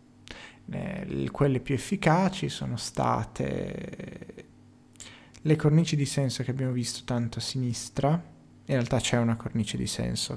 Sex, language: male, Italian